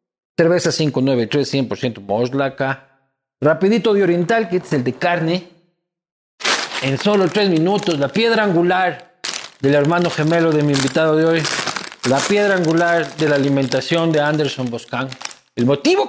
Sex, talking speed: male, 140 wpm